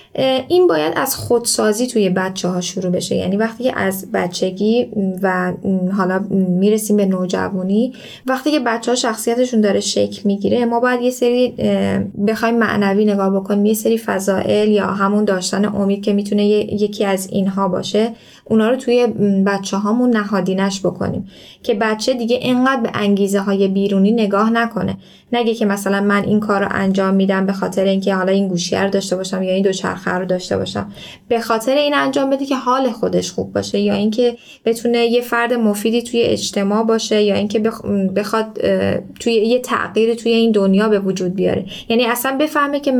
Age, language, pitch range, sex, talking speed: 10-29, Persian, 195-235 Hz, female, 170 wpm